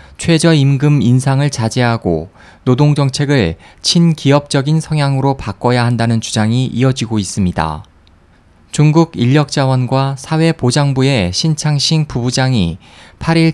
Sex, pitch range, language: male, 110-150 Hz, Korean